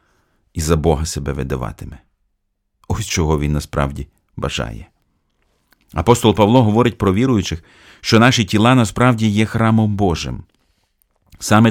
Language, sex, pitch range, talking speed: Ukrainian, male, 85-110 Hz, 120 wpm